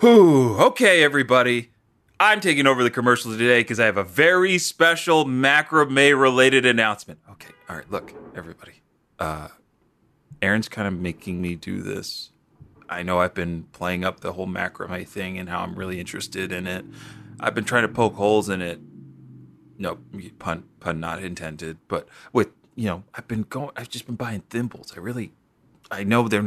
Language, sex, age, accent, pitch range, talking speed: English, male, 30-49, American, 95-130 Hz, 170 wpm